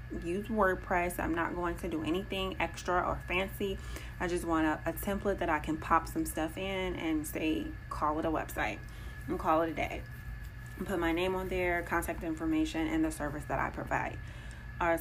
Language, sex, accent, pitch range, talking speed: English, female, American, 155-185 Hz, 195 wpm